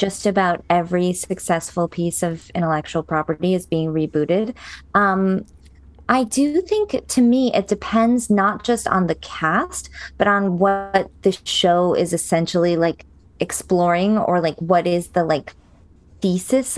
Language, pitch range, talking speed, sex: English, 175-220 Hz, 145 wpm, female